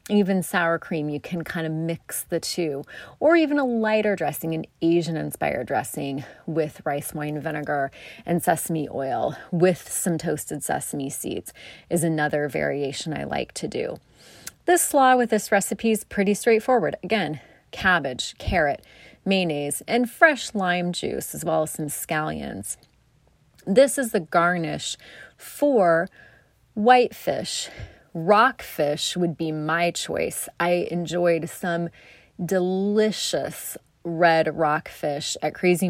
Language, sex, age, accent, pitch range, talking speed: English, female, 30-49, American, 155-200 Hz, 130 wpm